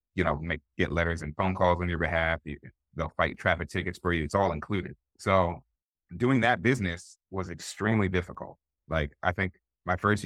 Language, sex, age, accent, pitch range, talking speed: English, male, 30-49, American, 80-95 Hz, 195 wpm